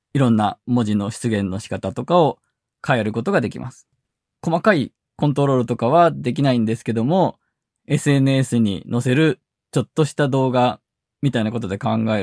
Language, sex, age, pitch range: Japanese, male, 20-39, 120-165 Hz